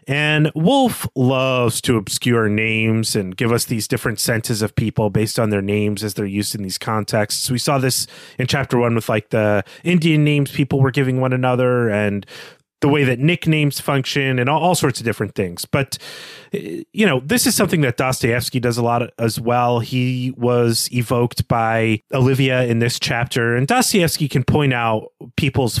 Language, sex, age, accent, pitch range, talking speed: English, male, 30-49, American, 115-145 Hz, 185 wpm